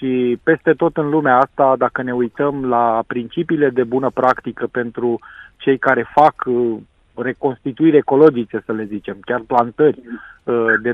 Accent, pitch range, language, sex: native, 120-150 Hz, Romanian, male